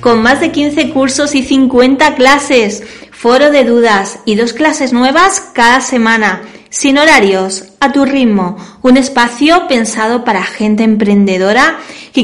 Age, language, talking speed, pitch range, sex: 20-39, Spanish, 140 wpm, 220-275 Hz, female